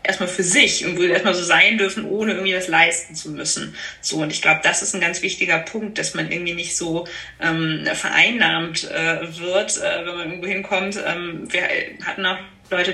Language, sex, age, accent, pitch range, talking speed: German, female, 20-39, German, 170-195 Hz, 205 wpm